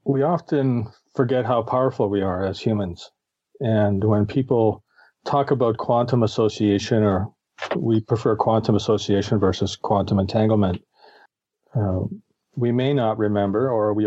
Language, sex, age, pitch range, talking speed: English, male, 40-59, 100-120 Hz, 130 wpm